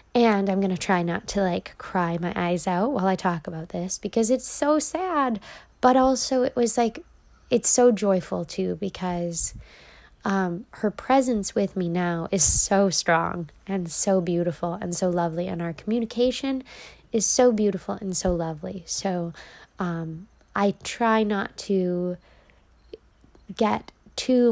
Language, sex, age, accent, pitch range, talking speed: English, female, 20-39, American, 175-220 Hz, 155 wpm